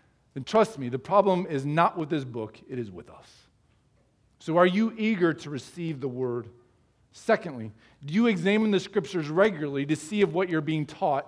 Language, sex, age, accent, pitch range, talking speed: English, male, 40-59, American, 145-200 Hz, 190 wpm